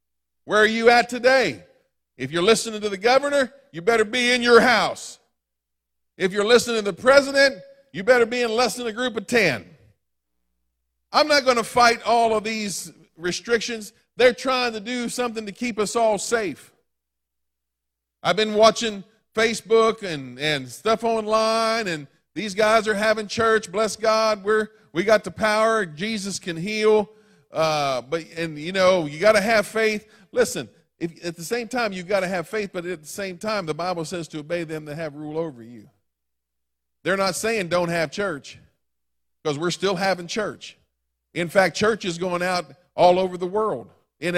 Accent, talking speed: American, 180 wpm